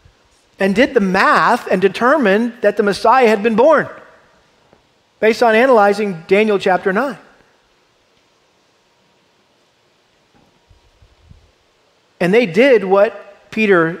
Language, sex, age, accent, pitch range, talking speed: English, male, 40-59, American, 185-235 Hz, 100 wpm